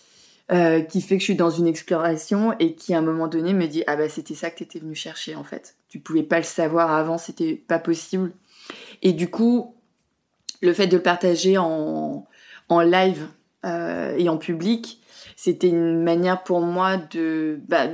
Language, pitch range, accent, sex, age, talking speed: French, 160-190 Hz, French, female, 20-39, 195 wpm